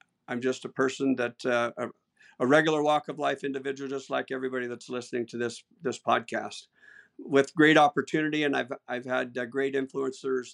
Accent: American